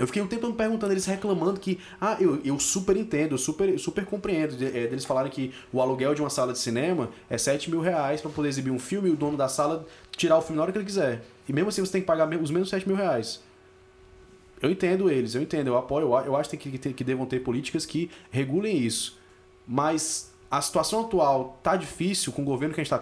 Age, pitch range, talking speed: 20-39, 130-180 Hz, 240 wpm